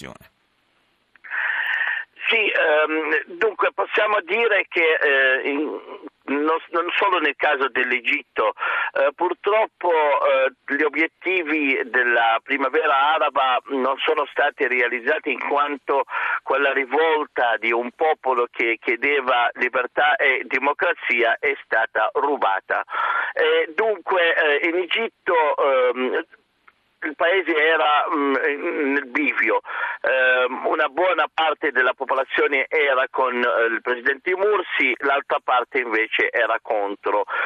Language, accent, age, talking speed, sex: Italian, native, 50-69, 105 wpm, male